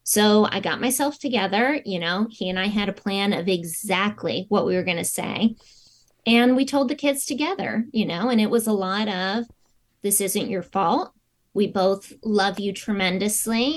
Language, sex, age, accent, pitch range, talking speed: English, female, 20-39, American, 190-230 Hz, 190 wpm